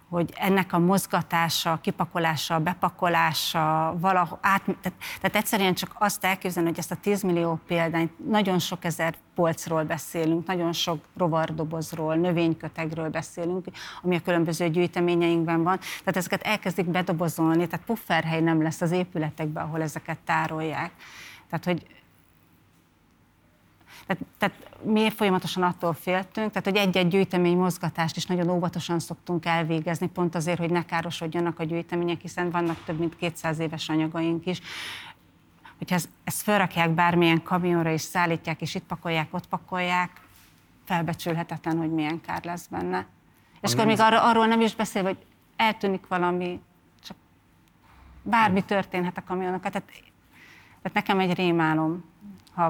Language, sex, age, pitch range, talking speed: Hungarian, female, 30-49, 165-185 Hz, 135 wpm